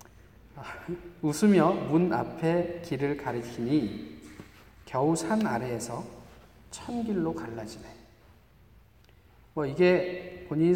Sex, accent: male, native